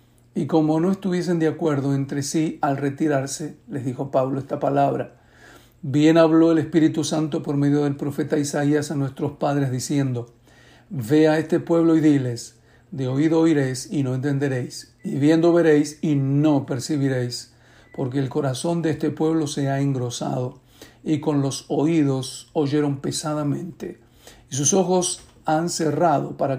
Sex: male